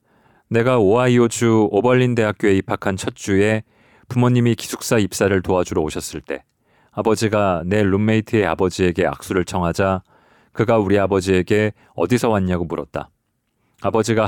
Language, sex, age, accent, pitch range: Korean, male, 40-59, native, 90-115 Hz